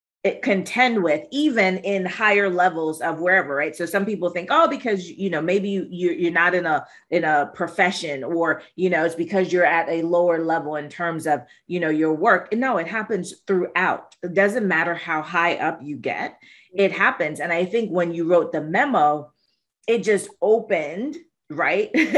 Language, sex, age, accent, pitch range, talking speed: English, female, 30-49, American, 160-200 Hz, 190 wpm